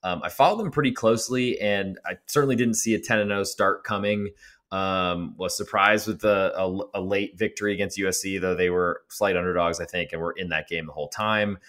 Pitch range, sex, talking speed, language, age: 90-110 Hz, male, 220 wpm, English, 20-39